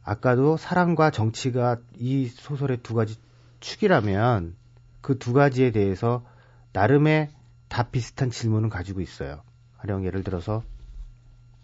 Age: 40-59